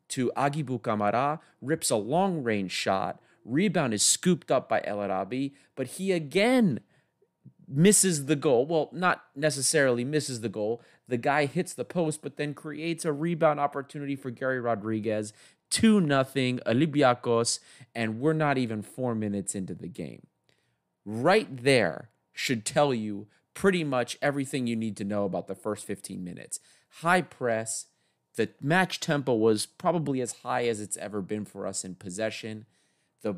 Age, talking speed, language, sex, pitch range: 30-49, 155 wpm, English, male, 110-155 Hz